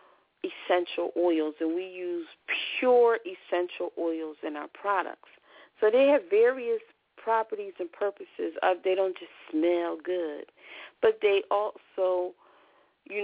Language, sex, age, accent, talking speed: English, female, 40-59, American, 125 wpm